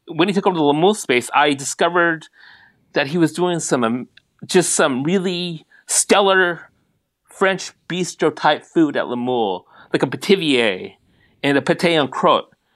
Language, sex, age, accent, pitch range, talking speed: English, male, 40-59, American, 135-180 Hz, 170 wpm